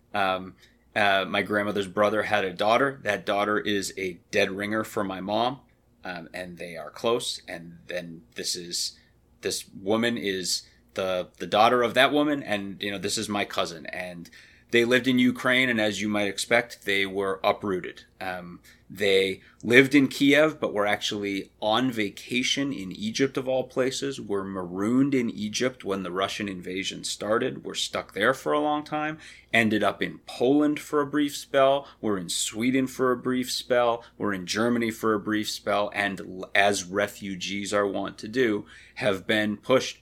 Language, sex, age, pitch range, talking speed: English, male, 30-49, 95-120 Hz, 175 wpm